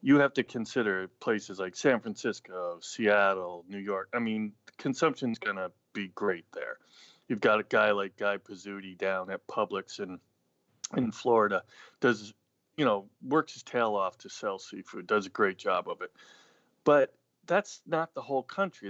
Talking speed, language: 170 wpm, English